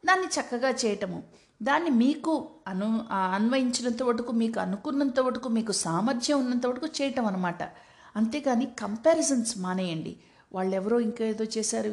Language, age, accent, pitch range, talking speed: Telugu, 50-69, native, 195-245 Hz, 95 wpm